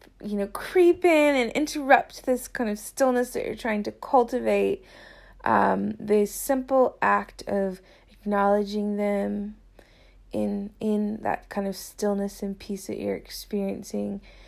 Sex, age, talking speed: female, 20-39, 135 wpm